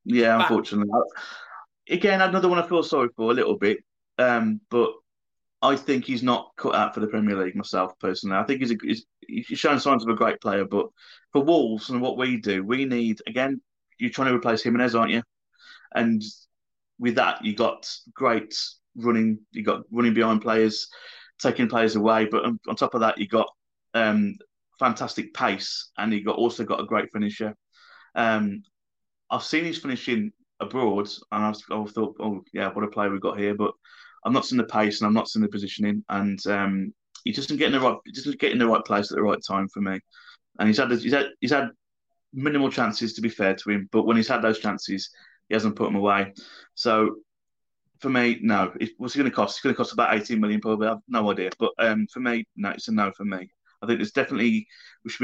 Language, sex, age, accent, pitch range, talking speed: English, male, 30-49, British, 105-130 Hz, 220 wpm